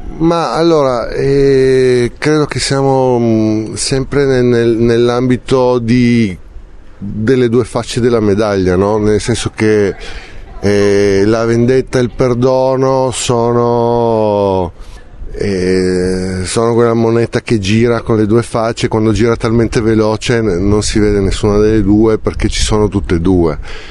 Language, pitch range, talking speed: Italian, 95-120 Hz, 135 wpm